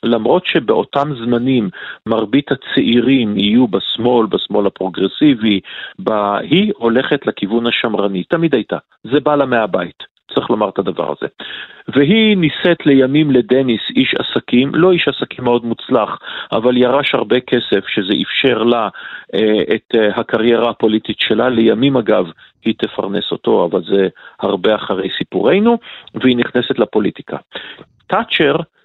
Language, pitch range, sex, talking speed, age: Hebrew, 115-150 Hz, male, 125 wpm, 40-59